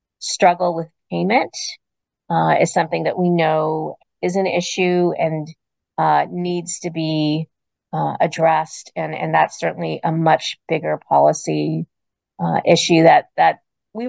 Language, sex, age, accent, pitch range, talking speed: English, female, 40-59, American, 160-200 Hz, 135 wpm